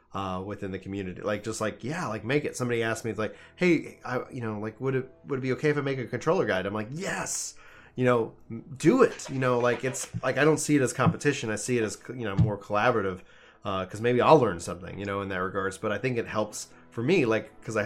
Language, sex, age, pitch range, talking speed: English, male, 30-49, 100-125 Hz, 270 wpm